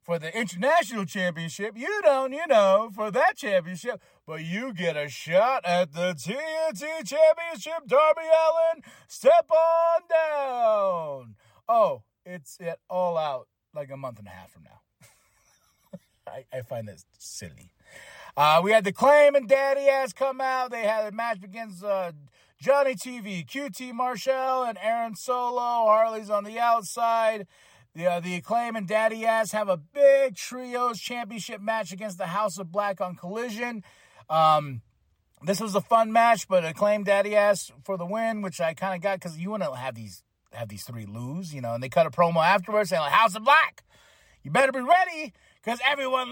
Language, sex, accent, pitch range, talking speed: English, male, American, 175-255 Hz, 175 wpm